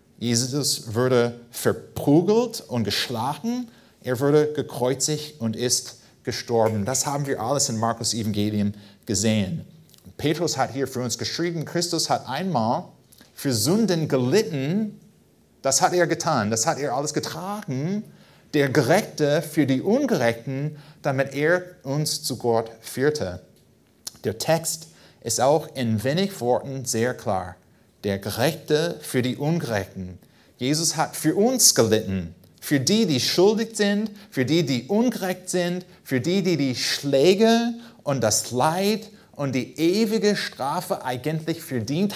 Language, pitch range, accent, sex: German, 115-165 Hz, German, male